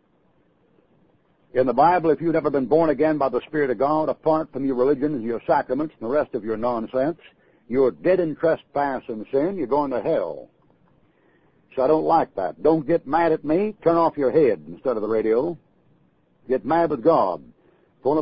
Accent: American